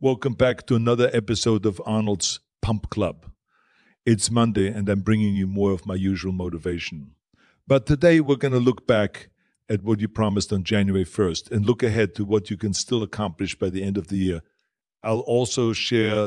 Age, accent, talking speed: 50-69, German, 190 wpm